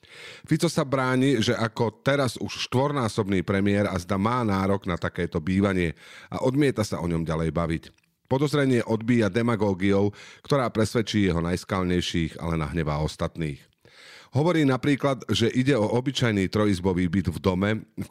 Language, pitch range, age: Slovak, 90-115 Hz, 40-59